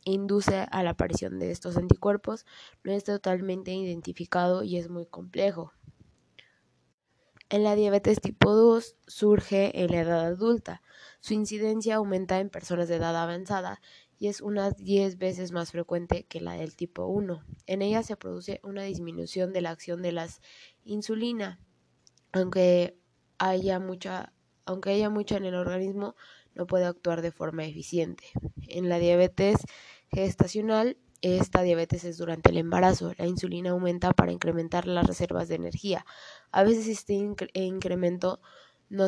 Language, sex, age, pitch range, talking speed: Spanish, female, 20-39, 175-200 Hz, 145 wpm